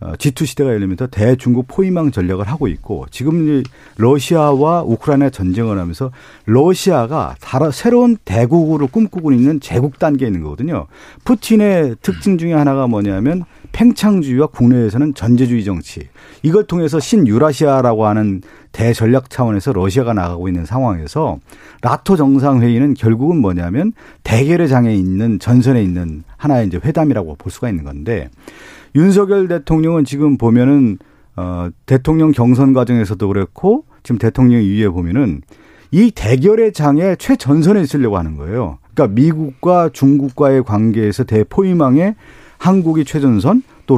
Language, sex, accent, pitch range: Korean, male, native, 110-160 Hz